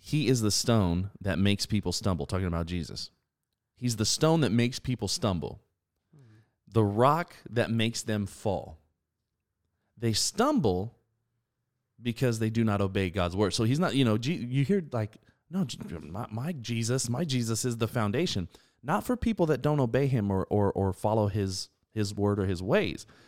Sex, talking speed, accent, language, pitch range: male, 170 wpm, American, English, 90-120 Hz